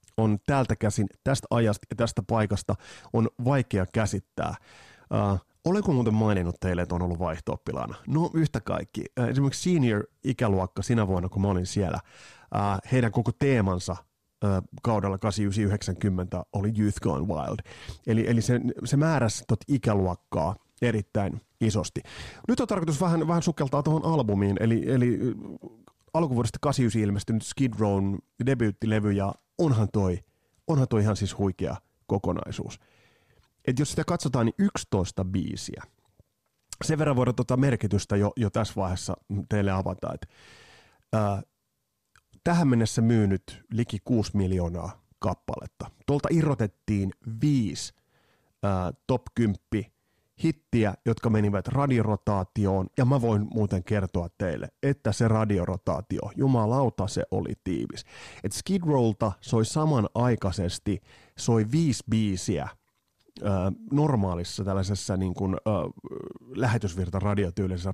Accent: native